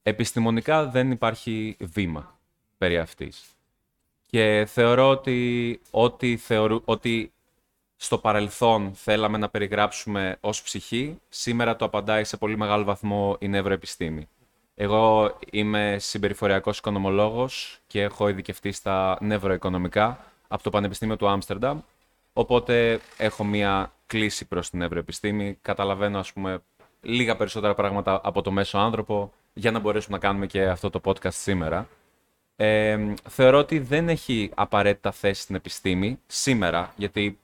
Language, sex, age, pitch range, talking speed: Greek, male, 20-39, 100-115 Hz, 130 wpm